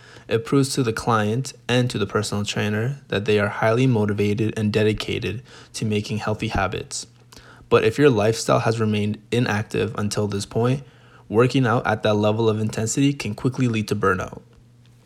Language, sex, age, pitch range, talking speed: English, male, 20-39, 105-125 Hz, 170 wpm